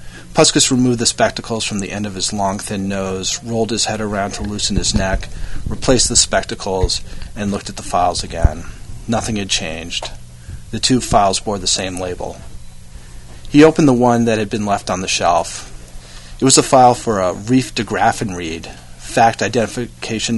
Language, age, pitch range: English, 40-59, 90-115 Hz